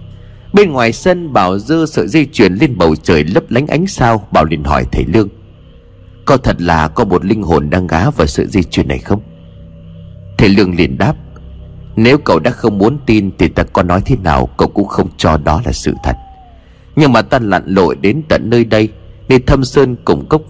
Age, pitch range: 30-49, 85-125 Hz